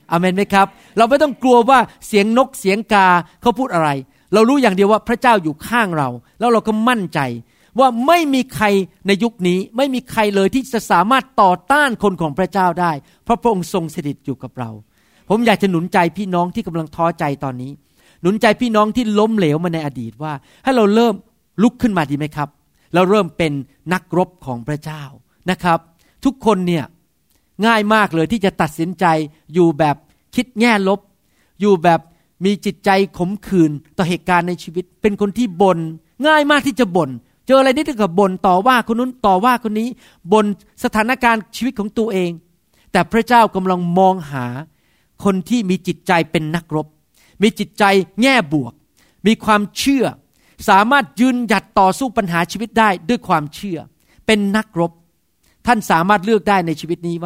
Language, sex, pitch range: Thai, male, 170-225 Hz